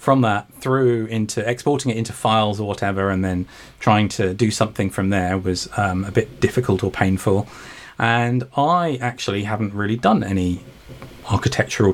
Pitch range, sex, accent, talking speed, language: 95-120 Hz, male, British, 165 wpm, English